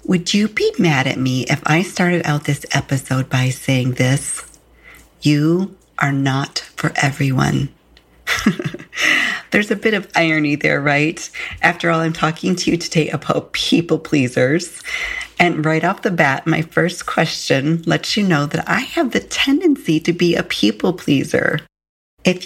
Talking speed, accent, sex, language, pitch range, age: 160 wpm, American, female, English, 145-185 Hz, 40-59